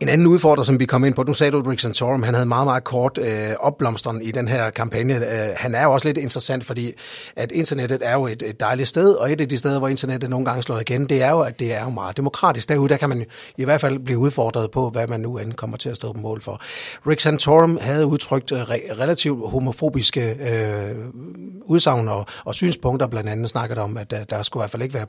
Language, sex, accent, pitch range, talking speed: Danish, male, native, 115-140 Hz, 250 wpm